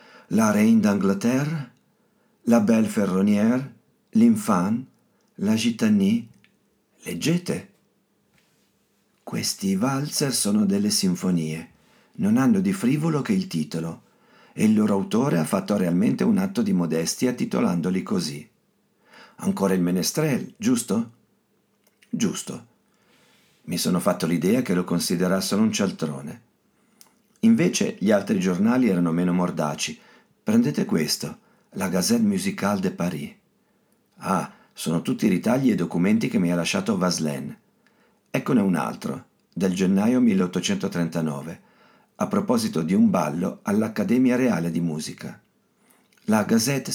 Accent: native